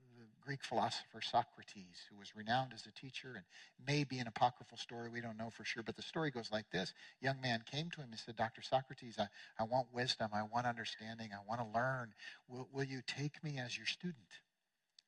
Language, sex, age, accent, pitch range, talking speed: English, male, 50-69, American, 120-155 Hz, 210 wpm